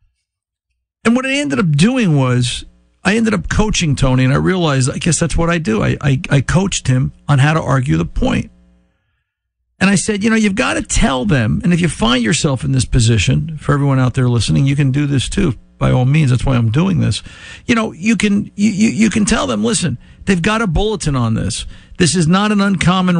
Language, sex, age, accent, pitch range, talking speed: English, male, 50-69, American, 135-175 Hz, 220 wpm